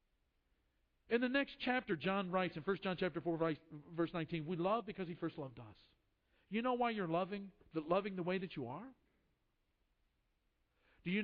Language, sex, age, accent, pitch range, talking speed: English, male, 50-69, American, 155-195 Hz, 175 wpm